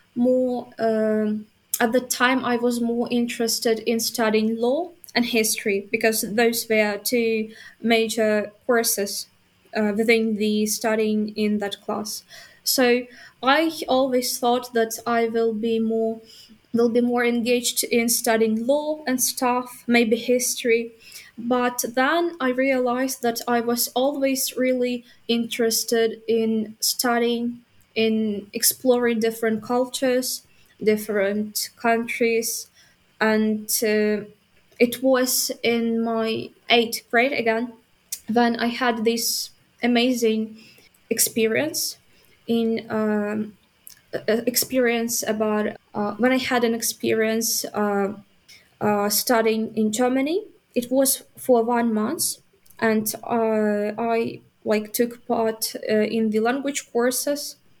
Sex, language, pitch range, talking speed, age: female, English, 220-245 Hz, 115 wpm, 20-39